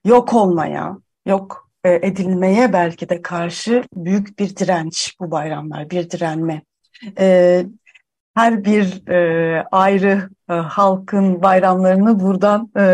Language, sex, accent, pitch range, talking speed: Turkish, female, native, 195-265 Hz, 95 wpm